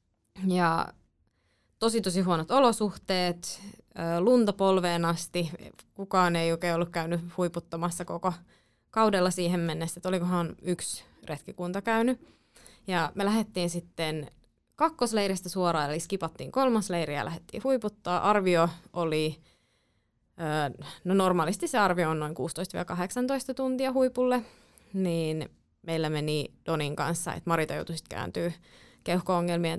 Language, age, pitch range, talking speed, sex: Finnish, 20-39, 165-245 Hz, 105 wpm, female